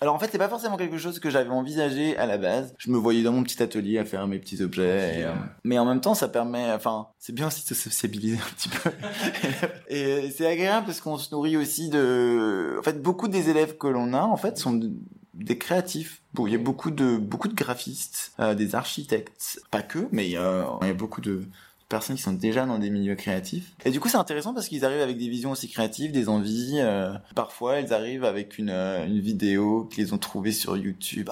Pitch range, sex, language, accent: 105-150 Hz, male, French, French